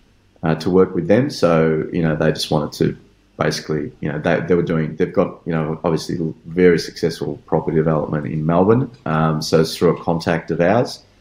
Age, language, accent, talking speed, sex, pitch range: 30-49, English, Australian, 205 wpm, male, 75-85 Hz